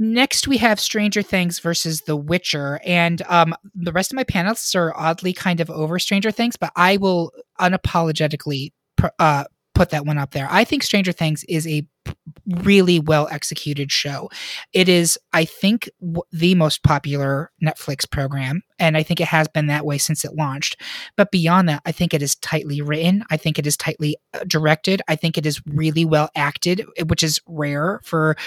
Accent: American